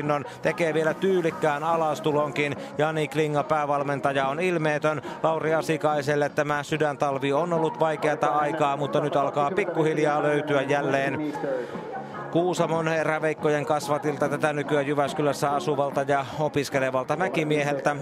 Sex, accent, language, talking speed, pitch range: male, native, Finnish, 110 wpm, 140-155 Hz